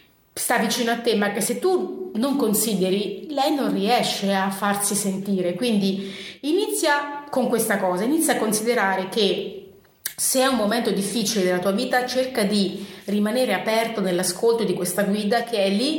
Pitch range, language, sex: 195-260 Hz, Italian, female